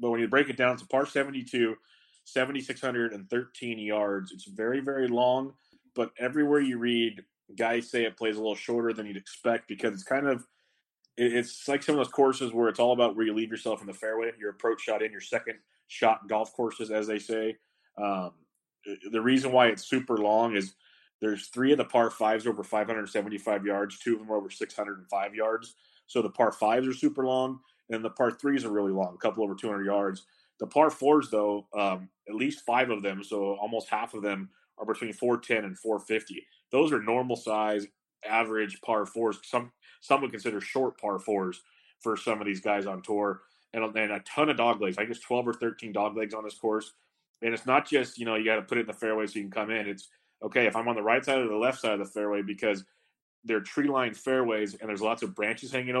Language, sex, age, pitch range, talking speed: English, male, 30-49, 105-125 Hz, 225 wpm